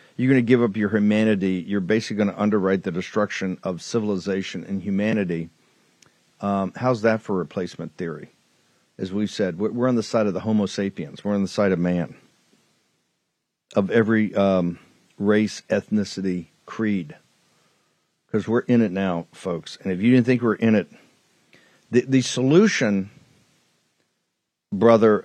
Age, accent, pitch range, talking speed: 50-69, American, 100-135 Hz, 155 wpm